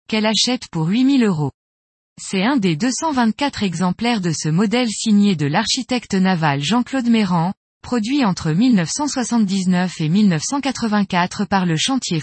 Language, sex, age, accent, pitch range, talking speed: French, female, 20-39, French, 175-240 Hz, 130 wpm